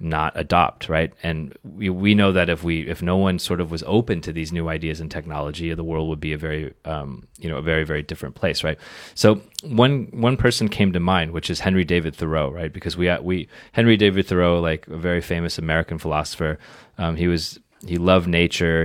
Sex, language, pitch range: male, Chinese, 80-95 Hz